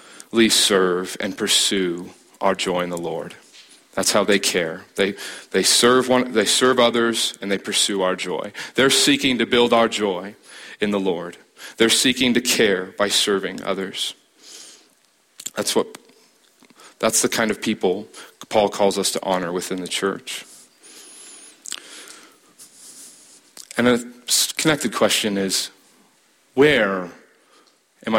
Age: 40-59